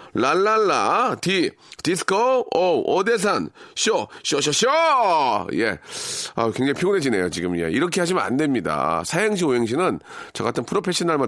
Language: Korean